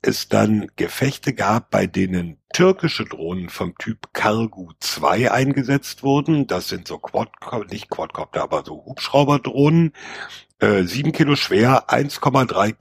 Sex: male